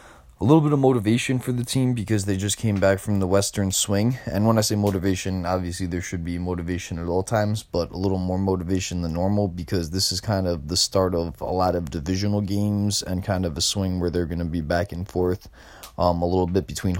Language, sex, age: English, male, 20-39